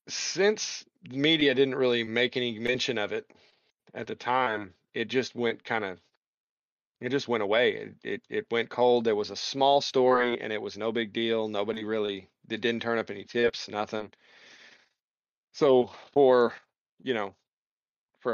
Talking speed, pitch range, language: 165 wpm, 110-125 Hz, English